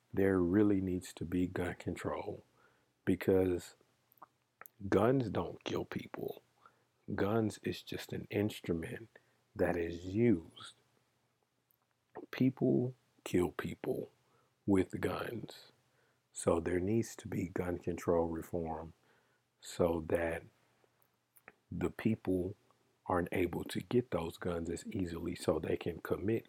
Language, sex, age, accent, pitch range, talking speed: English, male, 50-69, American, 85-105 Hz, 110 wpm